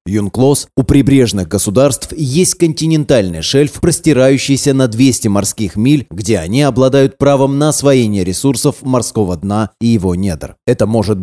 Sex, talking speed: male, 140 wpm